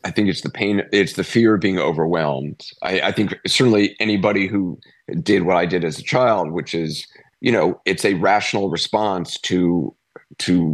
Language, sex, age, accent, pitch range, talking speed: English, male, 40-59, American, 80-90 Hz, 190 wpm